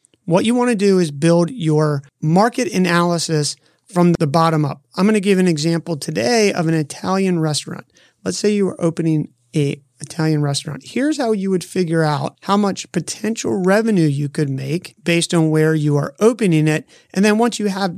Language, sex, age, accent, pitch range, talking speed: English, male, 30-49, American, 155-195 Hz, 185 wpm